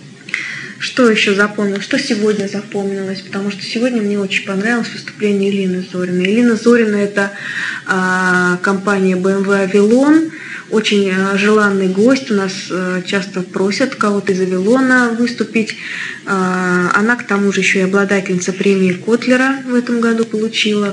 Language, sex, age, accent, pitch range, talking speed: Russian, female, 20-39, native, 195-230 Hz, 130 wpm